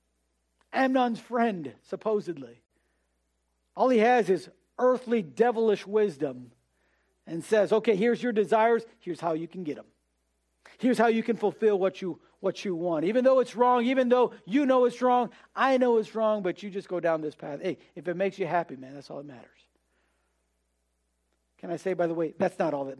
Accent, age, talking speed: American, 50-69, 195 wpm